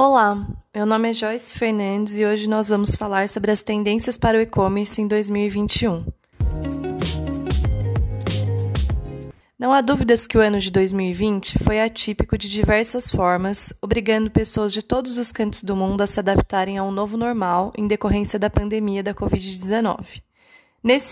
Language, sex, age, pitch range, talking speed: Portuguese, female, 20-39, 195-230 Hz, 155 wpm